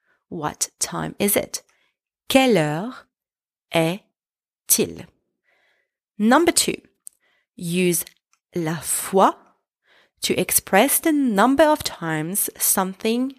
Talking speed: 85 wpm